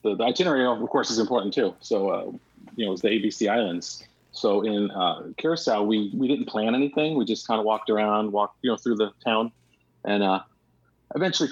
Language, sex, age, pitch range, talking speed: English, male, 30-49, 100-125 Hz, 215 wpm